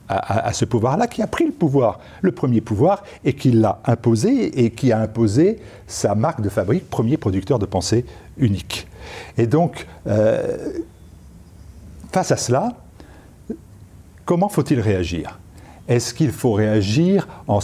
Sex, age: male, 50-69